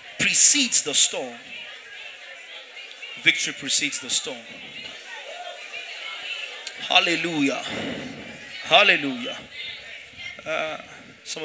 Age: 30-49